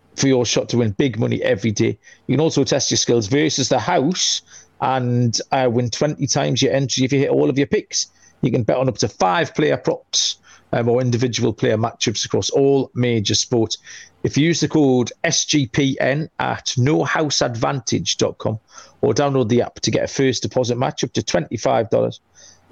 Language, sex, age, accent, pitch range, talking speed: English, male, 40-59, British, 120-145 Hz, 190 wpm